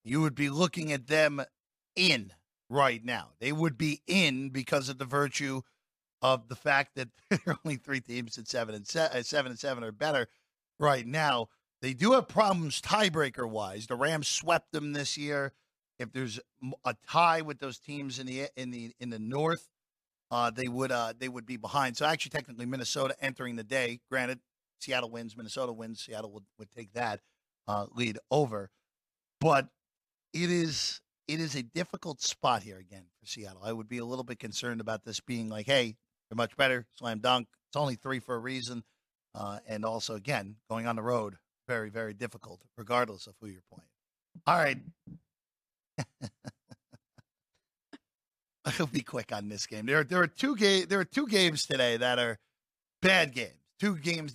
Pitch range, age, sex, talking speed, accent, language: 115-145 Hz, 50-69, male, 185 wpm, American, English